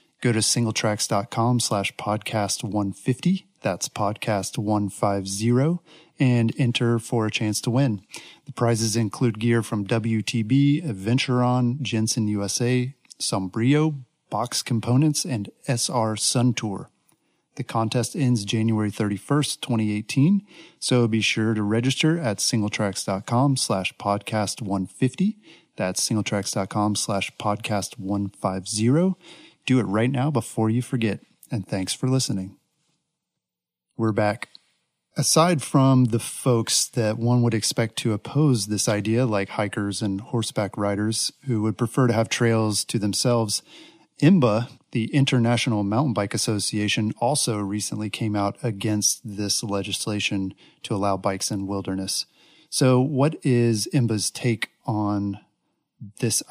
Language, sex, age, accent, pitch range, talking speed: English, male, 40-59, American, 105-125 Hz, 125 wpm